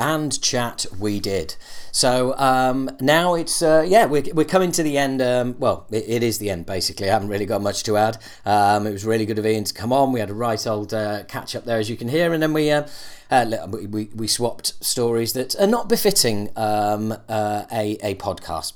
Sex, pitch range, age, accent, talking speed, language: male, 105-150 Hz, 40-59, British, 230 wpm, English